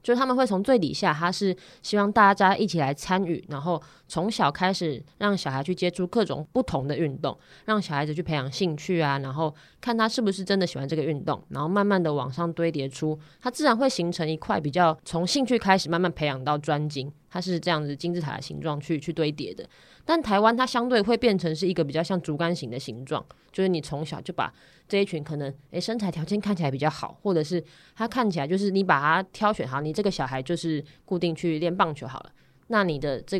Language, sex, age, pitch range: Chinese, female, 20-39, 150-190 Hz